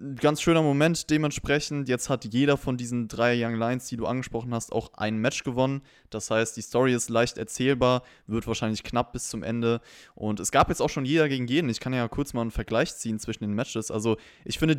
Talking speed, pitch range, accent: 225 wpm, 115-140 Hz, German